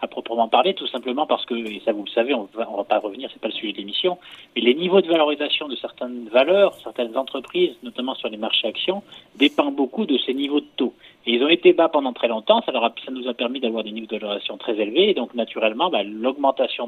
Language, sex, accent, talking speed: French, male, French, 265 wpm